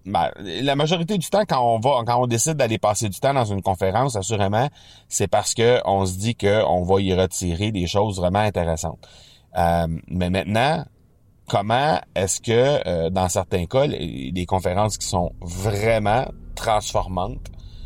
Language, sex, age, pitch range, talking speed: French, male, 30-49, 90-115 Hz, 165 wpm